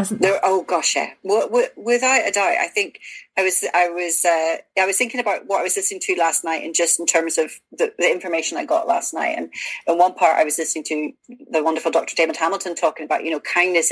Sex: female